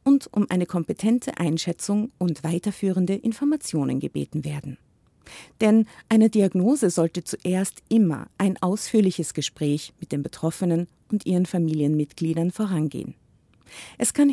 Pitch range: 165-215 Hz